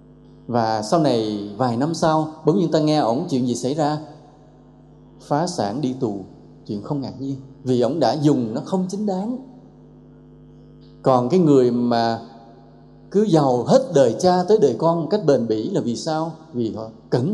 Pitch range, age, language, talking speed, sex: 110-160 Hz, 20-39, English, 180 wpm, male